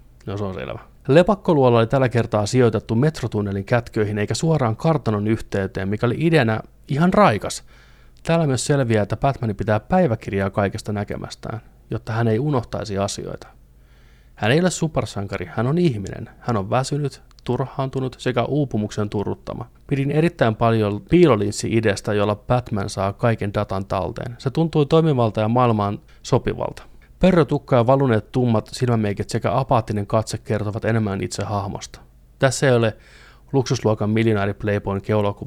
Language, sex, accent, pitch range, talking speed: Finnish, male, native, 105-135 Hz, 140 wpm